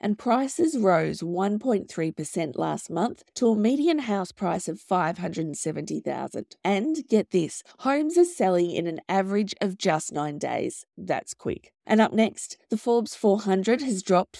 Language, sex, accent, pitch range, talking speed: English, female, Australian, 180-240 Hz, 150 wpm